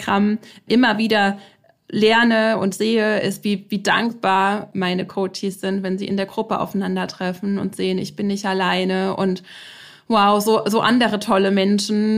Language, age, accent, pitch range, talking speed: German, 30-49, German, 185-210 Hz, 155 wpm